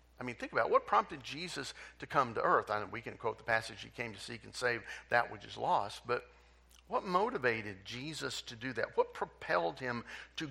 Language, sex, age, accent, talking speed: English, male, 50-69, American, 230 wpm